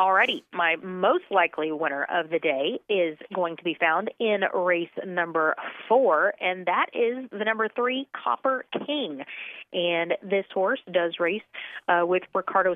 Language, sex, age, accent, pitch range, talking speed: English, female, 30-49, American, 170-220 Hz, 155 wpm